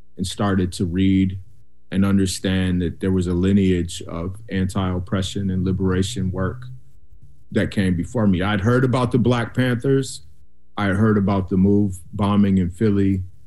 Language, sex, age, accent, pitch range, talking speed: English, male, 30-49, American, 90-105 Hz, 155 wpm